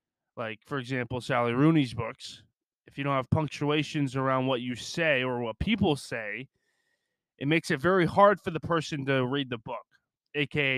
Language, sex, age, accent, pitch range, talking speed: English, male, 20-39, American, 130-155 Hz, 180 wpm